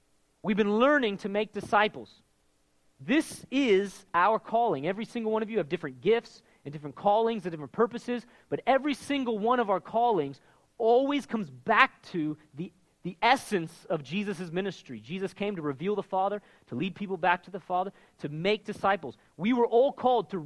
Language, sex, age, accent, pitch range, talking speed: English, male, 40-59, American, 180-245 Hz, 180 wpm